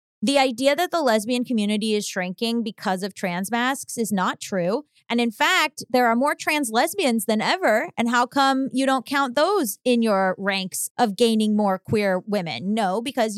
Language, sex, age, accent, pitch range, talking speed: English, female, 20-39, American, 210-275 Hz, 190 wpm